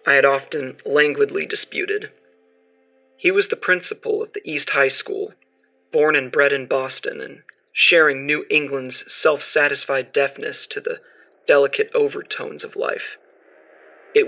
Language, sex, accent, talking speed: English, male, American, 135 wpm